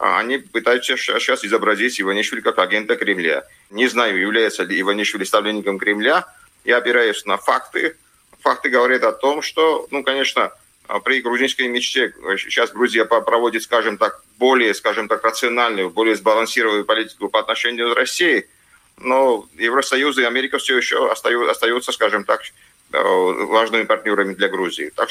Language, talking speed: Russian, 140 wpm